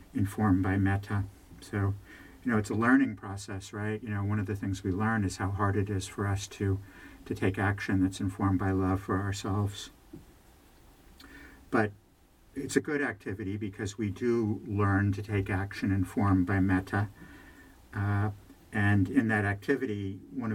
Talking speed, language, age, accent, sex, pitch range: 165 wpm, English, 60-79, American, male, 95-105 Hz